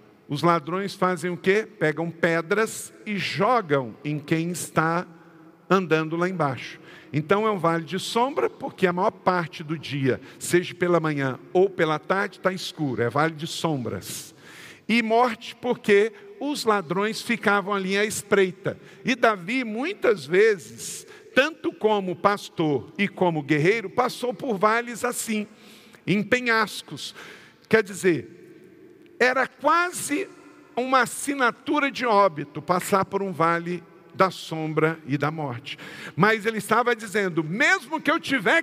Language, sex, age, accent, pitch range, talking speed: Portuguese, male, 50-69, Brazilian, 165-245 Hz, 140 wpm